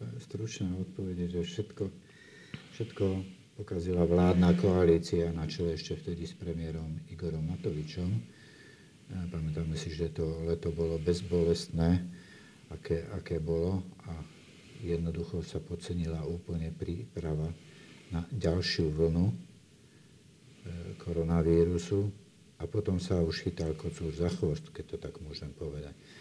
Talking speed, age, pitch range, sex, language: 115 wpm, 50-69, 80-90 Hz, male, Slovak